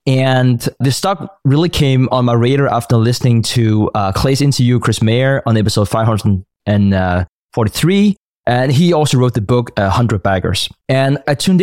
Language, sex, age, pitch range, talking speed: English, male, 20-39, 110-140 Hz, 160 wpm